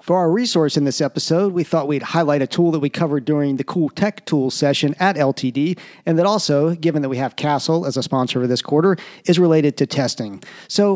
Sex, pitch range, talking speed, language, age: male, 145-175 Hz, 230 wpm, English, 40-59